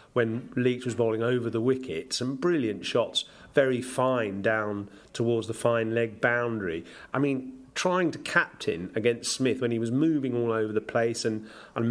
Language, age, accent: English, 40-59, British